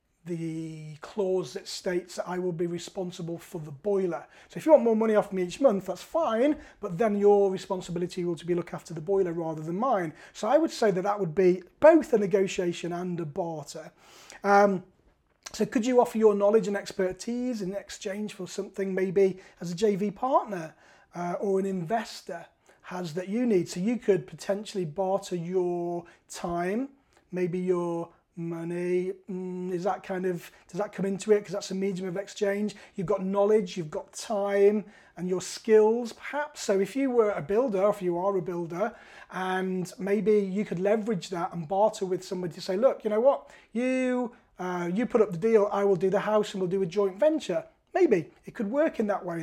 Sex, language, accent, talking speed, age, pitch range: male, English, British, 200 wpm, 30-49, 180-215 Hz